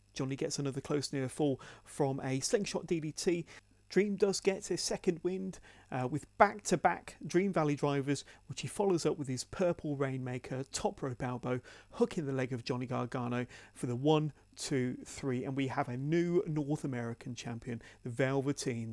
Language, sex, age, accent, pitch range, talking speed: English, male, 40-59, British, 125-160 Hz, 170 wpm